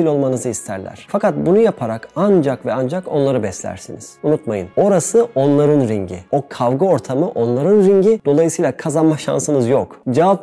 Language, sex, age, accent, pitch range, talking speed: Turkish, male, 30-49, native, 125-165 Hz, 140 wpm